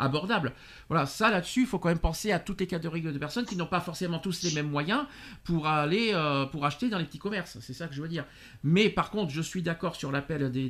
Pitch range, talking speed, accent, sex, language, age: 140-185 Hz, 275 wpm, French, male, French, 50-69